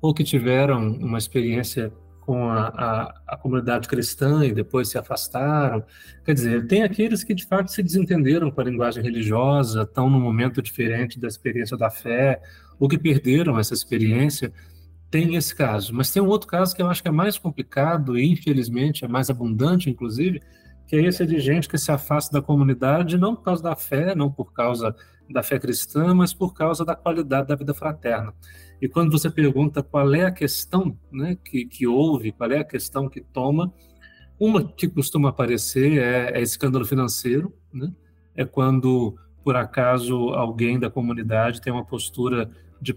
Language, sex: Portuguese, male